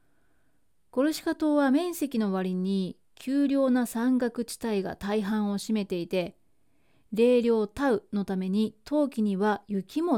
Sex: female